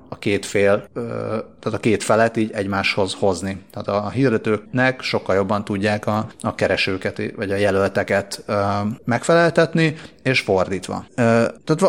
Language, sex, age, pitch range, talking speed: Hungarian, male, 30-49, 100-120 Hz, 130 wpm